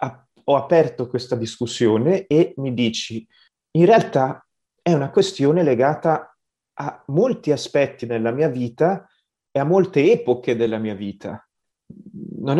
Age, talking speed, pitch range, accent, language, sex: 30-49, 130 wpm, 125-160 Hz, native, Italian, male